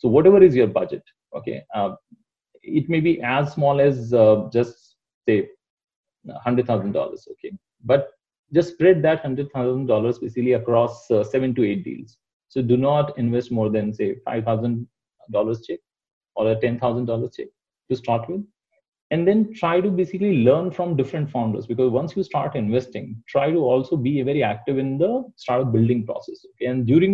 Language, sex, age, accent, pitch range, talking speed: English, male, 30-49, Indian, 115-165 Hz, 170 wpm